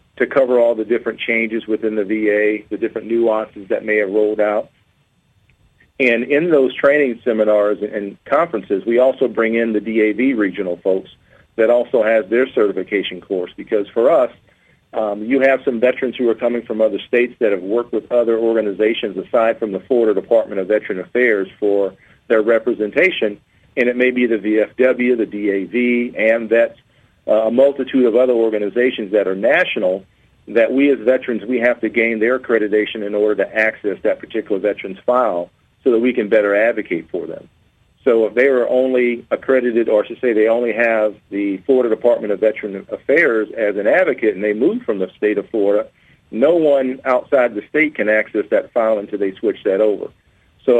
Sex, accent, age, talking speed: male, American, 50-69, 185 wpm